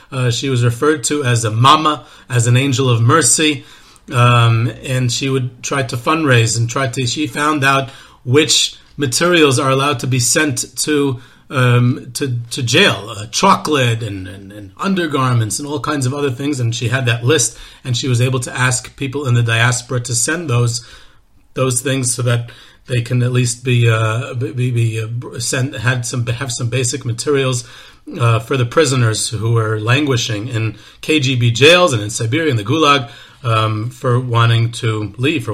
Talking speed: 180 wpm